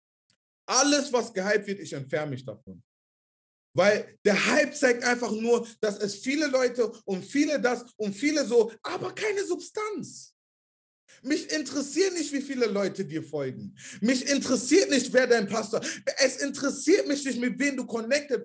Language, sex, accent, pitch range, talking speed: German, male, German, 165-255 Hz, 160 wpm